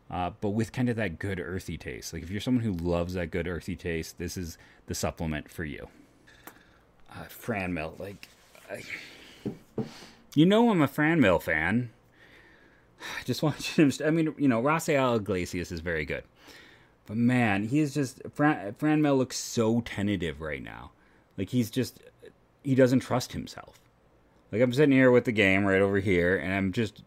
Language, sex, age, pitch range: English, male, 30-49, 95-125 Hz